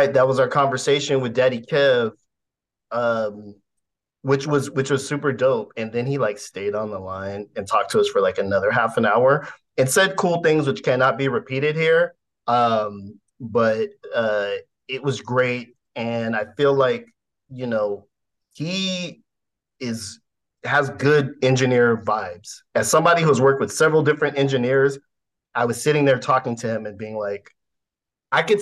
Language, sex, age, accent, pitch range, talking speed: English, male, 30-49, American, 115-150 Hz, 165 wpm